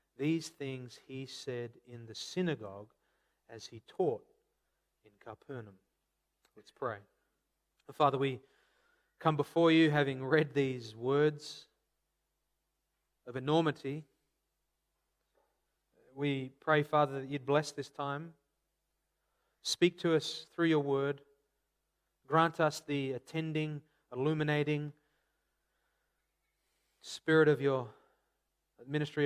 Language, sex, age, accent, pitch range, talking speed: English, male, 30-49, Australian, 130-155 Hz, 100 wpm